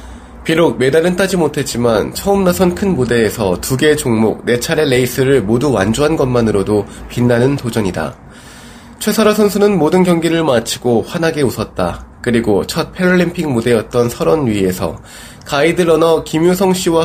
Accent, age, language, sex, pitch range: native, 20-39, Korean, male, 115-165 Hz